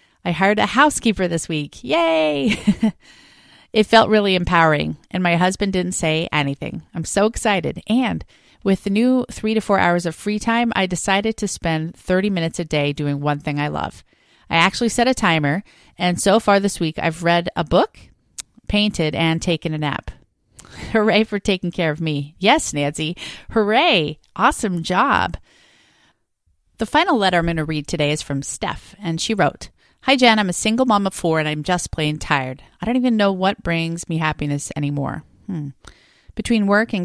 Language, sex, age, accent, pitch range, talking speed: English, female, 30-49, American, 160-210 Hz, 185 wpm